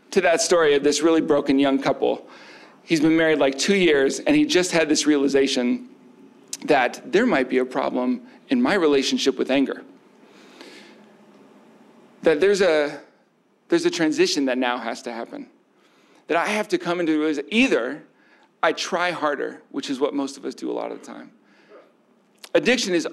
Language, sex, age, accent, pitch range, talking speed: English, male, 40-59, American, 135-195 Hz, 175 wpm